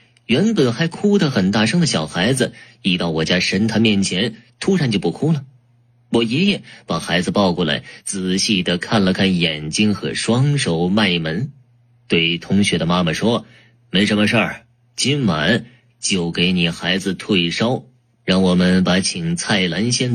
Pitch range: 95-120 Hz